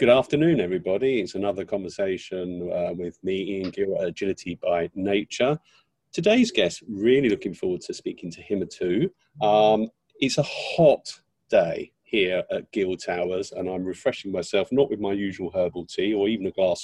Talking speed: 170 wpm